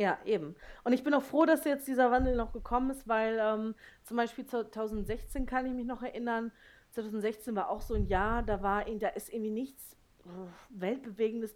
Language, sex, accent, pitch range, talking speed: German, female, German, 195-245 Hz, 185 wpm